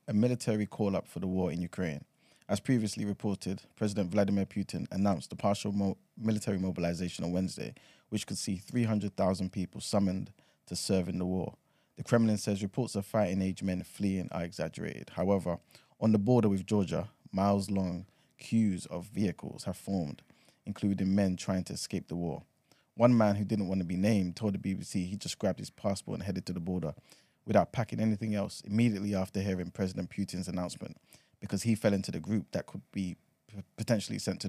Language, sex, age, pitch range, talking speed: English, male, 20-39, 95-105 Hz, 185 wpm